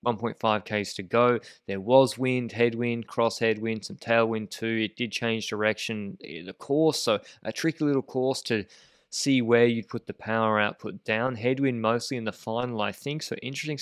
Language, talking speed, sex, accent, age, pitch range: English, 185 wpm, male, Australian, 20-39, 105-130 Hz